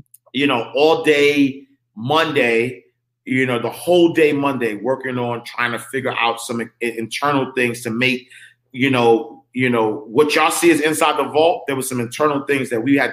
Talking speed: 185 wpm